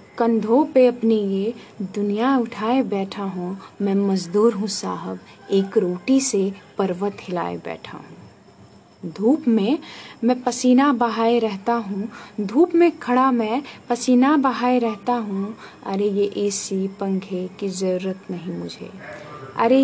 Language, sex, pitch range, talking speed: Hindi, female, 205-260 Hz, 130 wpm